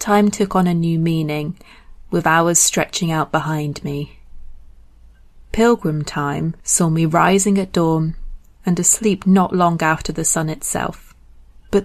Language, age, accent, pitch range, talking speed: English, 30-49, British, 160-195 Hz, 140 wpm